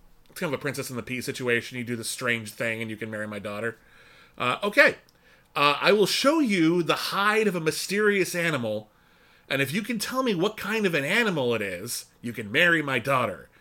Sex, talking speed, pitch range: male, 220 wpm, 120-170 Hz